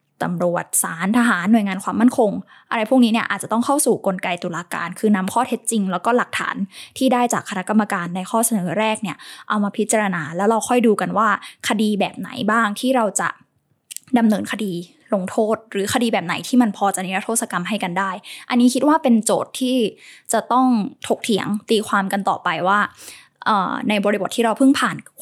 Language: Thai